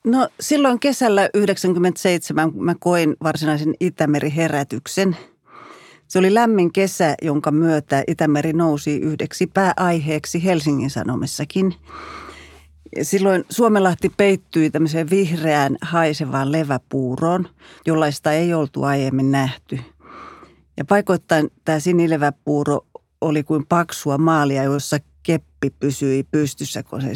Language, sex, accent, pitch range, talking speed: Finnish, female, native, 140-175 Hz, 95 wpm